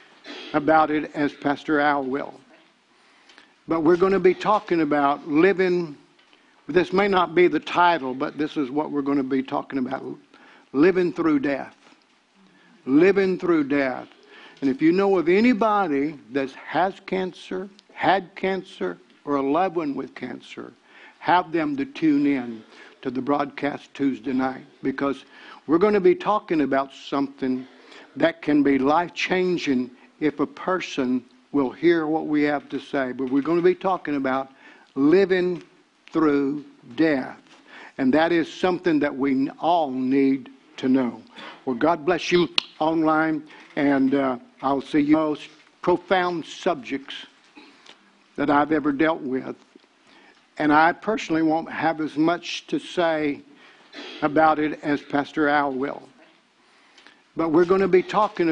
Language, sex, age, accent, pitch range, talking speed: English, male, 60-79, American, 140-185 Hz, 150 wpm